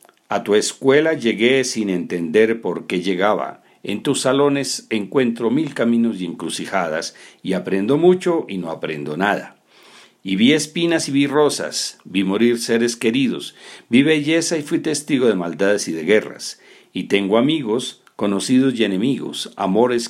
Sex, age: male, 50-69